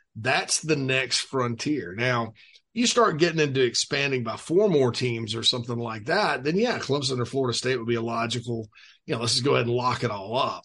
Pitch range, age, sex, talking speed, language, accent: 120-150 Hz, 40-59, male, 220 wpm, English, American